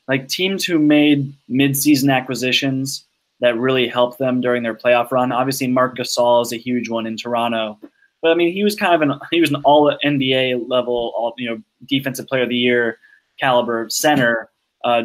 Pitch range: 125-150 Hz